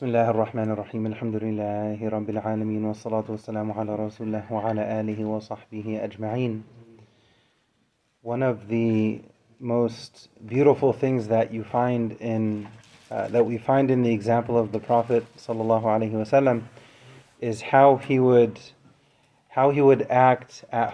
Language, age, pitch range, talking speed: English, 30-49, 115-135 Hz, 85 wpm